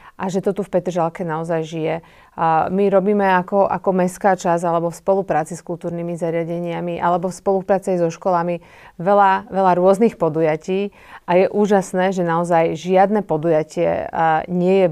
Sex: female